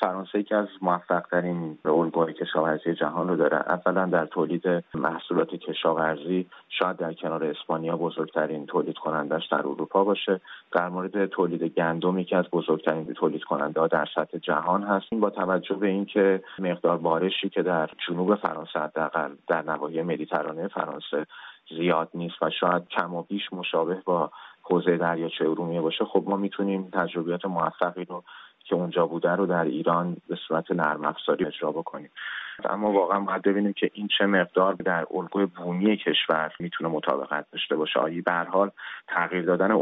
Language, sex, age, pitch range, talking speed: Persian, male, 30-49, 85-95 Hz, 150 wpm